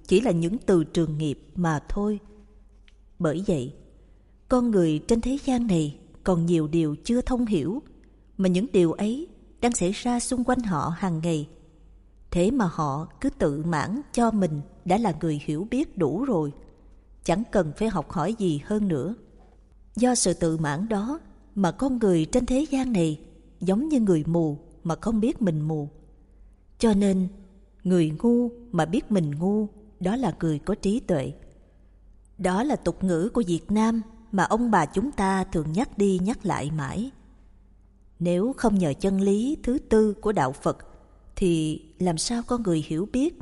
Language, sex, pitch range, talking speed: Vietnamese, female, 155-220 Hz, 175 wpm